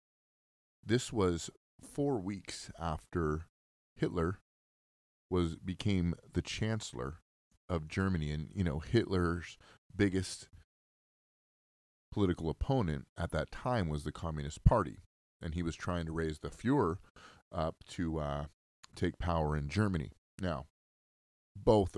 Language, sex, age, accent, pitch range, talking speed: English, male, 30-49, American, 75-100 Hz, 115 wpm